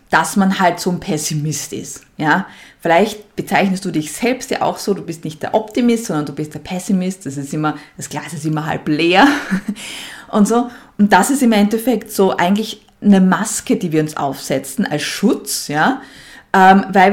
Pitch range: 170-220 Hz